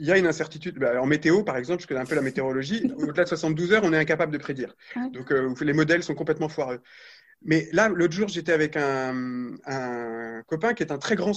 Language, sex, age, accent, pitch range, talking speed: French, male, 30-49, French, 145-200 Hz, 245 wpm